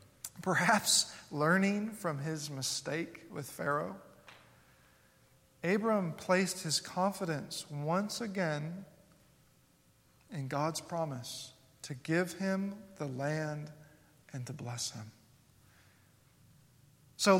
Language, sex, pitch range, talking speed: English, male, 145-190 Hz, 90 wpm